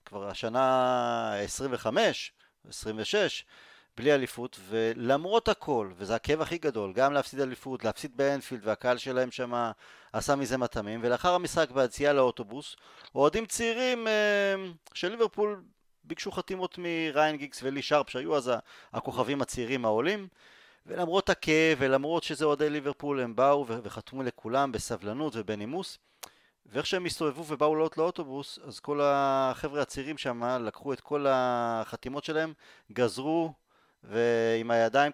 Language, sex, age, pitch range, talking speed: Hebrew, male, 30-49, 125-160 Hz, 130 wpm